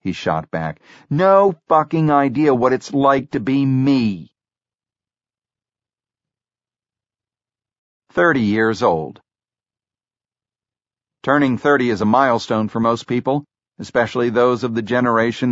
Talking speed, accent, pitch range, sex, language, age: 110 wpm, American, 110-145 Hz, male, English, 50-69